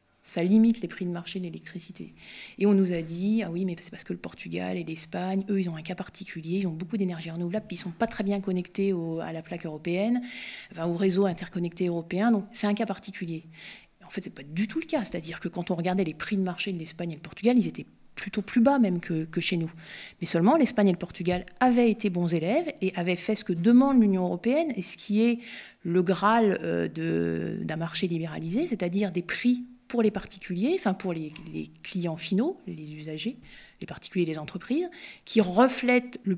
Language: French